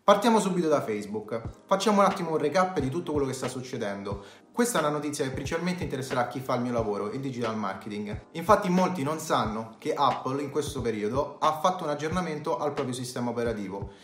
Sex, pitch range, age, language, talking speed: male, 120-190 Hz, 30-49, Italian, 200 wpm